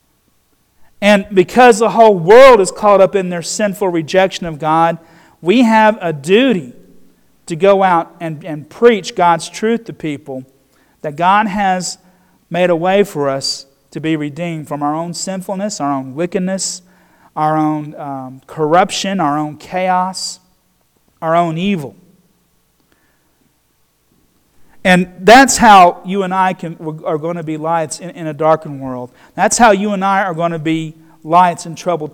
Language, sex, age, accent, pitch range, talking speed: English, male, 40-59, American, 160-195 Hz, 160 wpm